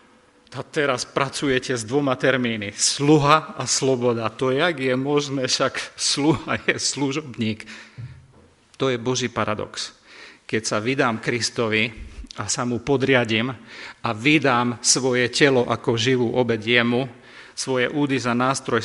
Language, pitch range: Slovak, 115-140 Hz